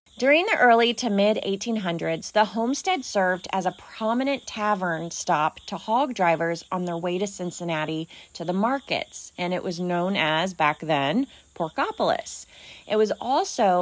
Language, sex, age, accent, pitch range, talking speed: English, female, 30-49, American, 170-215 Hz, 150 wpm